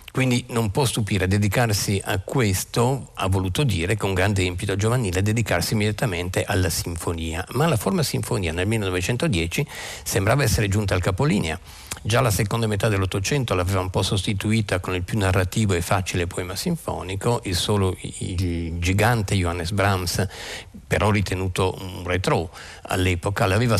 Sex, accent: male, native